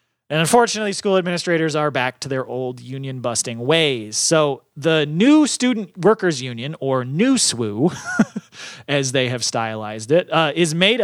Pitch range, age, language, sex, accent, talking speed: 140-195 Hz, 30-49, English, male, American, 150 wpm